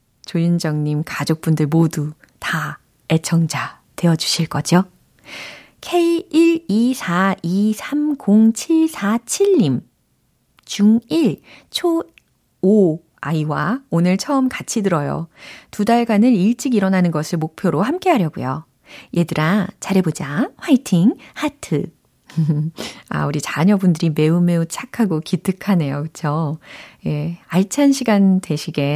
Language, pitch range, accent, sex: Korean, 155-230 Hz, native, female